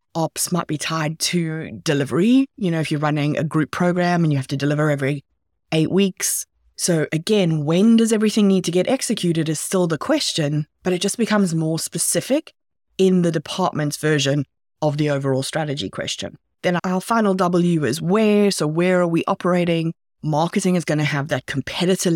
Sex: female